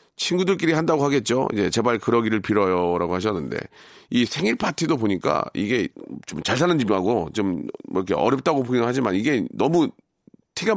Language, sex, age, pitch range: Korean, male, 40-59, 105-160 Hz